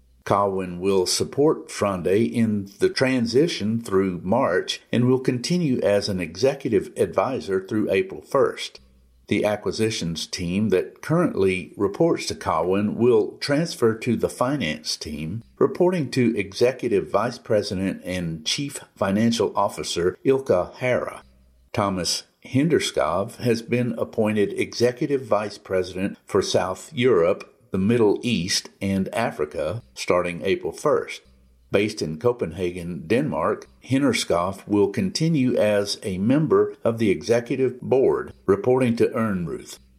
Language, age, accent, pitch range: English, 50-69, American, 90-125 Hz